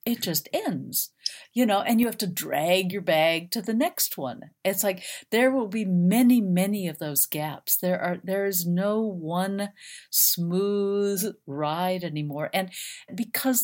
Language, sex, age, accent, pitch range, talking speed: English, female, 50-69, American, 150-195 Hz, 165 wpm